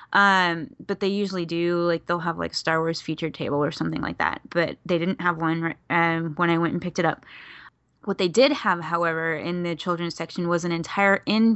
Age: 10-29